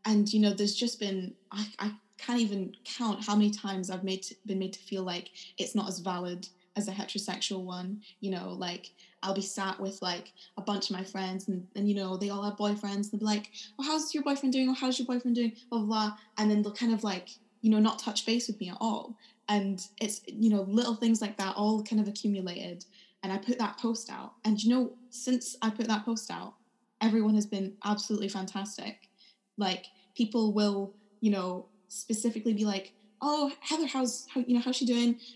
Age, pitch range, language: 10-29, 195-230 Hz, English